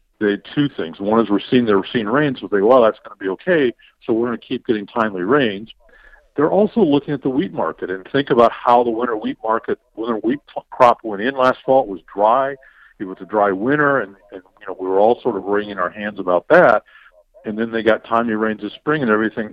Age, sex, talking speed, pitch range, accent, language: 50-69, male, 245 wpm, 105-125 Hz, American, English